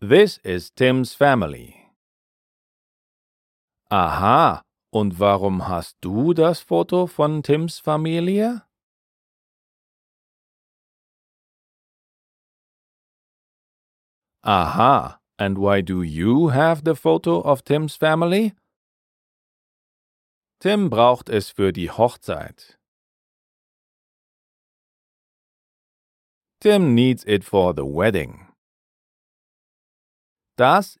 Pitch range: 100-170 Hz